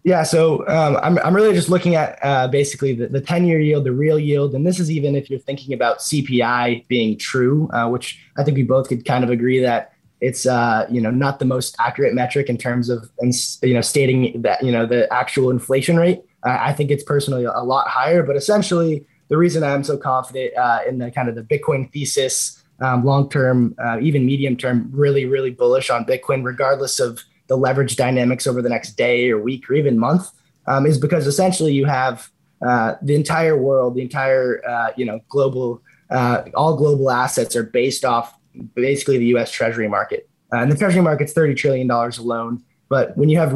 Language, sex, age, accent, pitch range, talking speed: English, male, 20-39, American, 125-150 Hz, 205 wpm